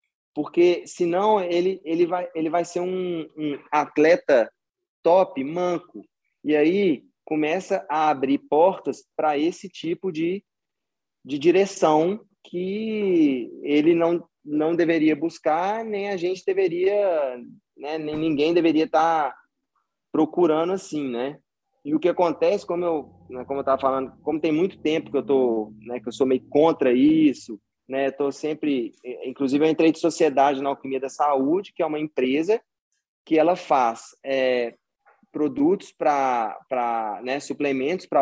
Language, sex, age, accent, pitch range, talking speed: Portuguese, male, 20-39, Brazilian, 140-185 Hz, 150 wpm